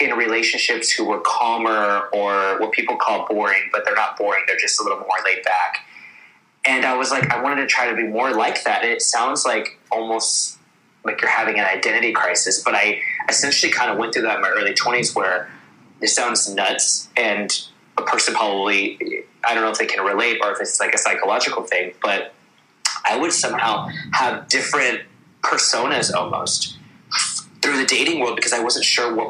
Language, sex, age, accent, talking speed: English, male, 20-39, American, 195 wpm